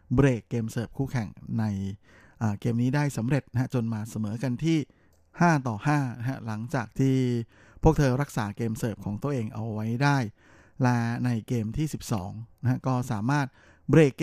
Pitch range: 110-135 Hz